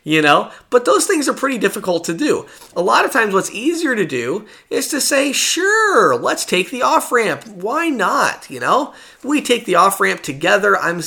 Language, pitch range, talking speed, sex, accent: English, 150-195 Hz, 195 wpm, male, American